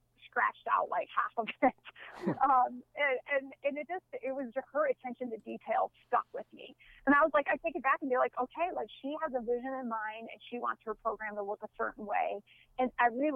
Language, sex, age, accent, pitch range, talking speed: English, female, 30-49, American, 220-255 Hz, 235 wpm